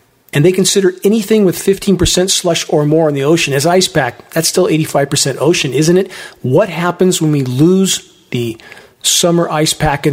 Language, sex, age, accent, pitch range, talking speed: English, male, 40-59, American, 140-170 Hz, 185 wpm